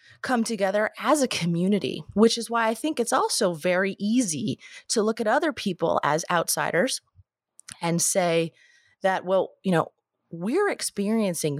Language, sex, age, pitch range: English, female, 30-49, 170-235 Hz